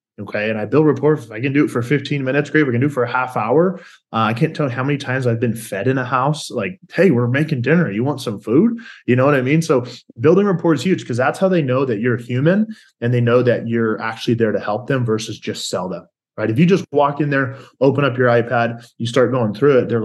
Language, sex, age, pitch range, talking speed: English, male, 20-39, 115-145 Hz, 280 wpm